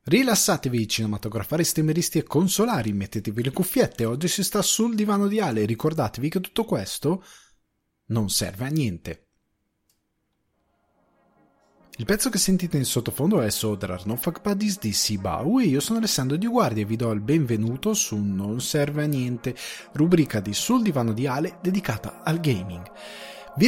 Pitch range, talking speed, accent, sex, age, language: 115-185 Hz, 155 wpm, native, male, 30-49, Italian